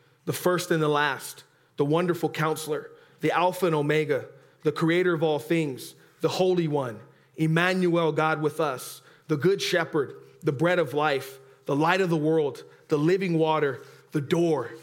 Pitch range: 140-170 Hz